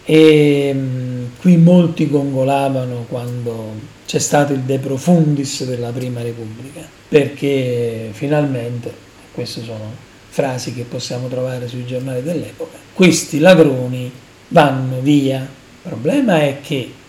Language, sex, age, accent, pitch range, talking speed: Italian, male, 40-59, native, 125-160 Hz, 110 wpm